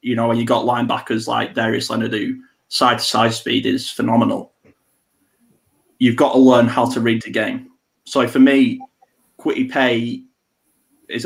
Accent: British